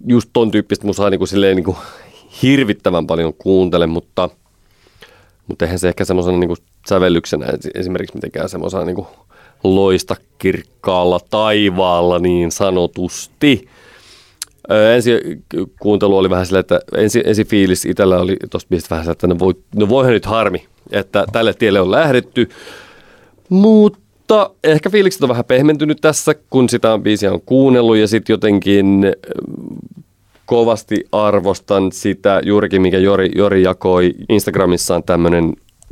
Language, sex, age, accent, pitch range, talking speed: Finnish, male, 30-49, native, 95-115 Hz, 125 wpm